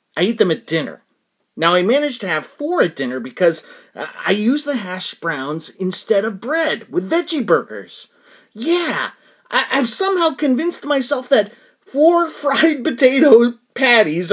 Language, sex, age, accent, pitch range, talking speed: English, male, 30-49, American, 165-255 Hz, 145 wpm